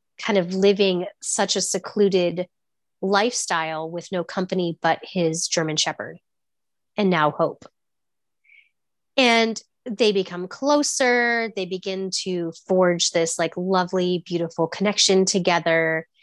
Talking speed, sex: 115 wpm, female